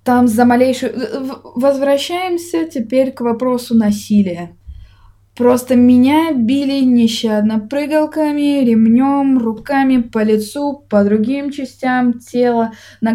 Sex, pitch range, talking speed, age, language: female, 225-280 Hz, 100 wpm, 20-39, Russian